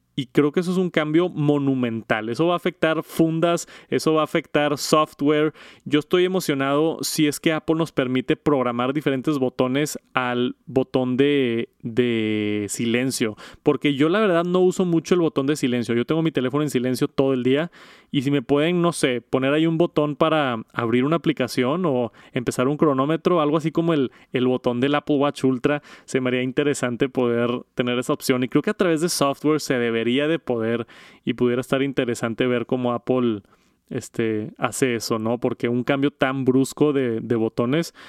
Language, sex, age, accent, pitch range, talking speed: Spanish, male, 20-39, Mexican, 125-155 Hz, 190 wpm